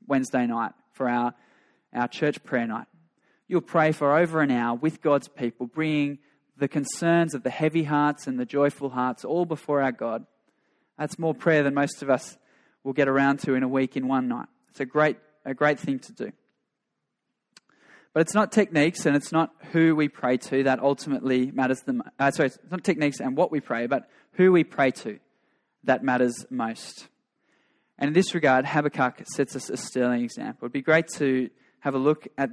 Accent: Australian